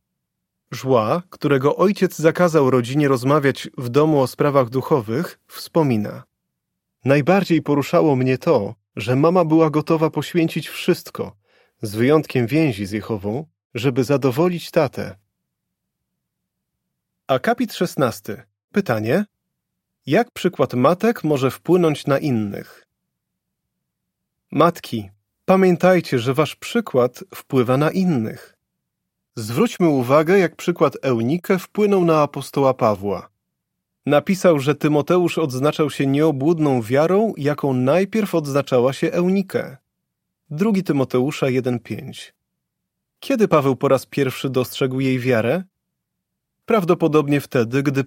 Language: Polish